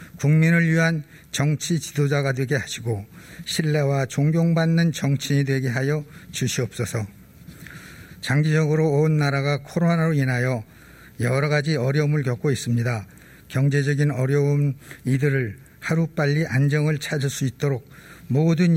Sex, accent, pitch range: male, native, 130-155 Hz